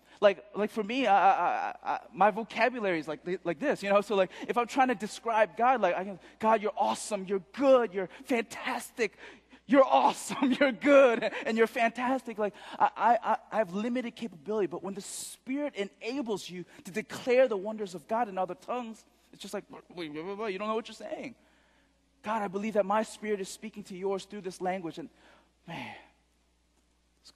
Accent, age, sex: American, 20-39, male